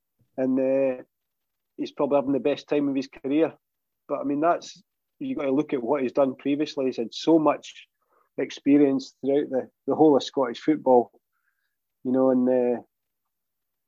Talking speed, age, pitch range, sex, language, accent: 175 wpm, 40-59, 130-145 Hz, male, English, British